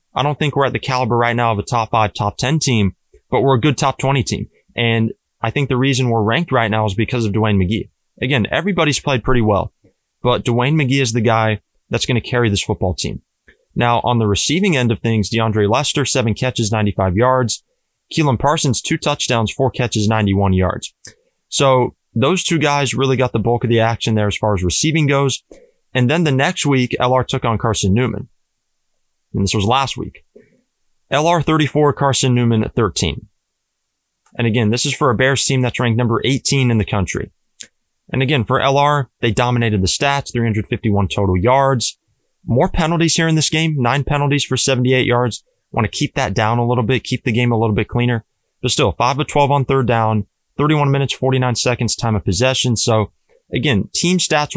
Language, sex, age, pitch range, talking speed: English, male, 20-39, 110-140 Hz, 205 wpm